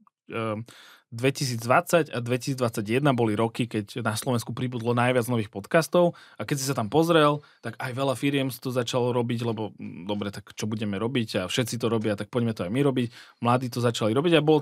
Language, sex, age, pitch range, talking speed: Slovak, male, 20-39, 115-140 Hz, 195 wpm